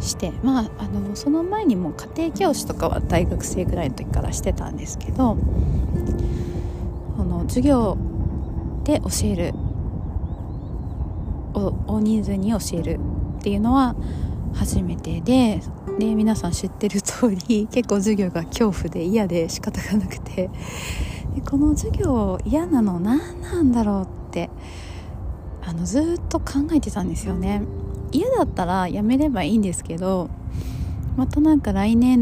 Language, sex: Japanese, female